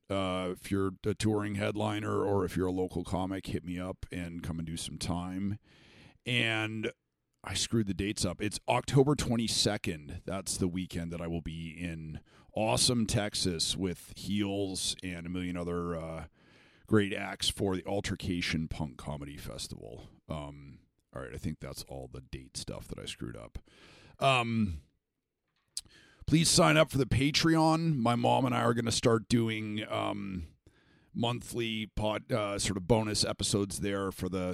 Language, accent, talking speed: English, American, 165 wpm